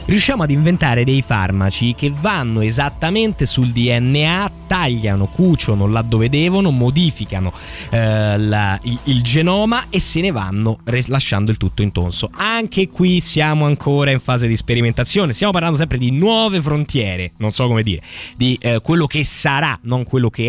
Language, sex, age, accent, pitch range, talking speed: Italian, male, 20-39, native, 110-150 Hz, 160 wpm